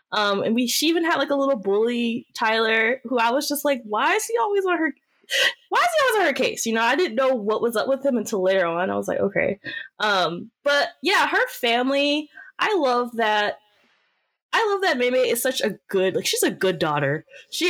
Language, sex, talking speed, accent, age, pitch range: English, female, 230 wpm, American, 10-29, 230-345 Hz